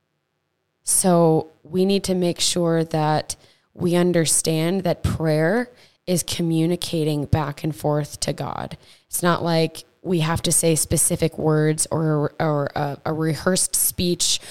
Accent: American